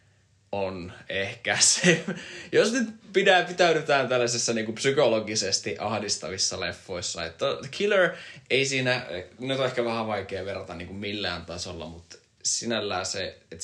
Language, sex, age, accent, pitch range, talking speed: Finnish, male, 20-39, native, 90-115 Hz, 130 wpm